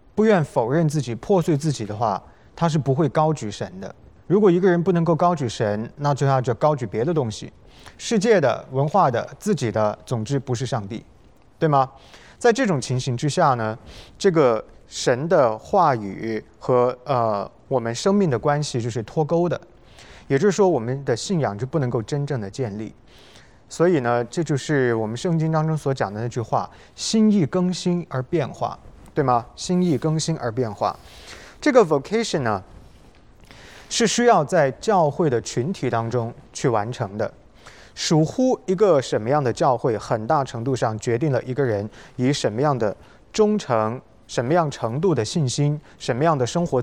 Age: 20-39